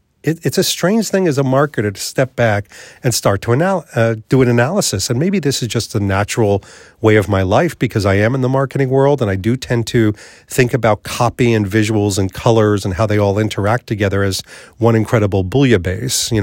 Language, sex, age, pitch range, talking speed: English, male, 40-59, 110-140 Hz, 215 wpm